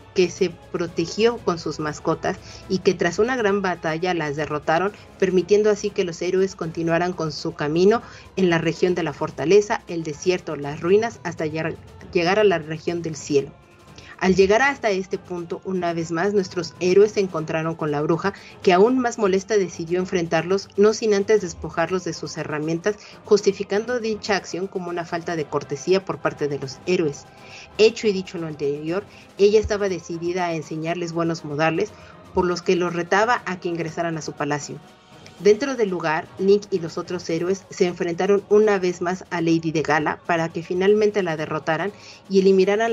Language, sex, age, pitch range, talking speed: Spanish, female, 40-59, 160-195 Hz, 180 wpm